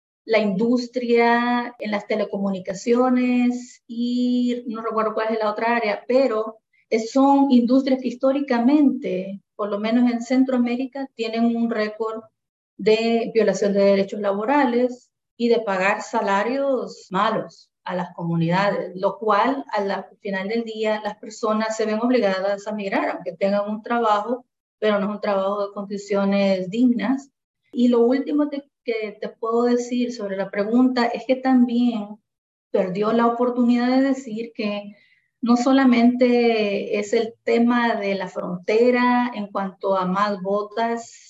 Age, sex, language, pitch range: 30-49, female, English, 205-245 Hz